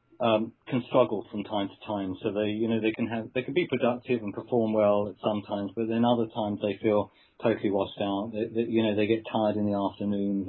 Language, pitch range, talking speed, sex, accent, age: English, 100-120 Hz, 245 wpm, male, British, 40-59